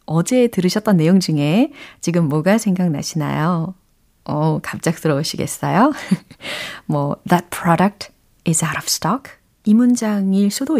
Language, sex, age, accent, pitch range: Korean, female, 30-49, native, 165-225 Hz